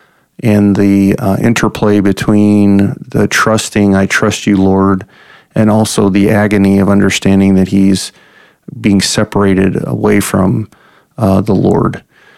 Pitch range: 100-110 Hz